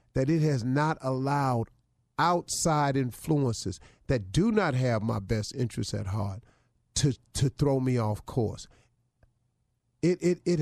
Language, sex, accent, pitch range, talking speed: English, male, American, 110-140 Hz, 140 wpm